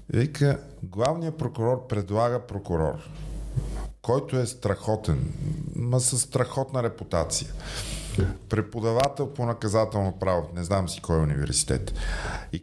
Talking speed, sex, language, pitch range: 105 wpm, male, Bulgarian, 100-145 Hz